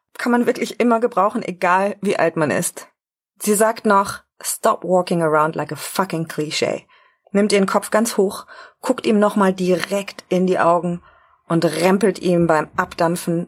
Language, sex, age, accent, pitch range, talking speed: German, female, 30-49, German, 170-210 Hz, 165 wpm